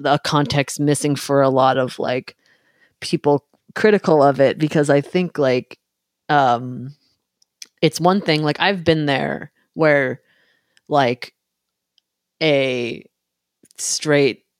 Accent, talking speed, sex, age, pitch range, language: American, 115 wpm, female, 30-49, 125-140 Hz, English